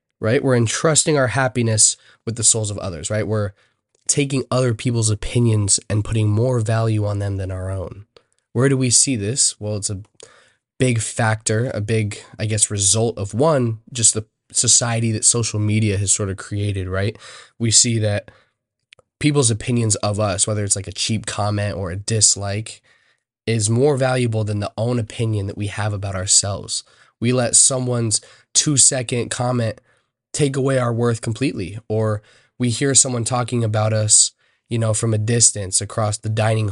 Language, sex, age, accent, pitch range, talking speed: English, male, 20-39, American, 105-125 Hz, 175 wpm